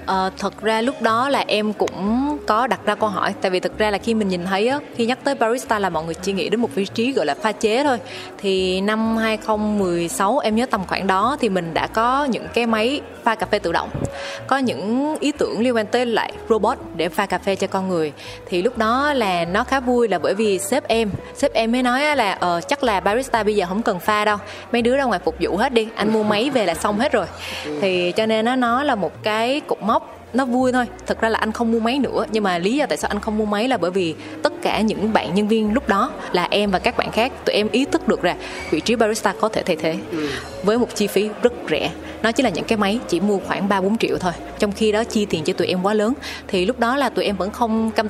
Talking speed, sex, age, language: 270 wpm, female, 20-39, Vietnamese